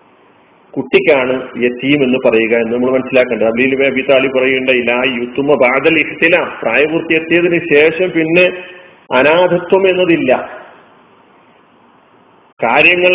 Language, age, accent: Malayalam, 40-59, native